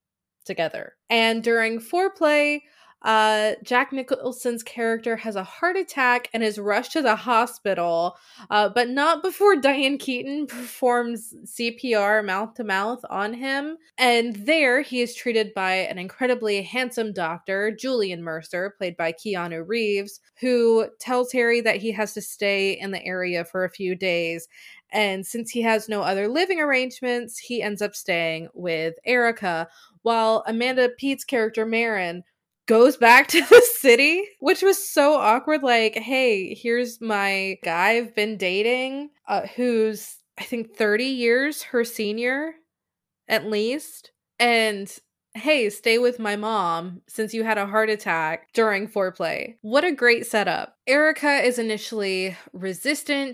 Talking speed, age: 145 wpm, 20-39